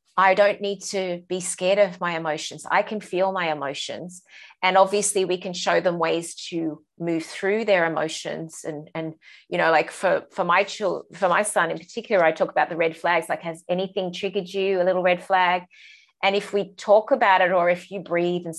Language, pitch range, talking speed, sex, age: English, 165-205 Hz, 215 wpm, female, 30-49